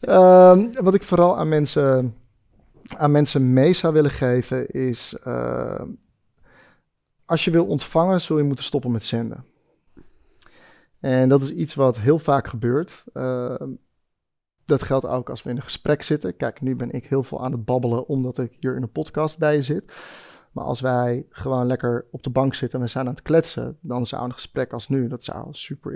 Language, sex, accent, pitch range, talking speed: Dutch, male, Dutch, 125-150 Hz, 190 wpm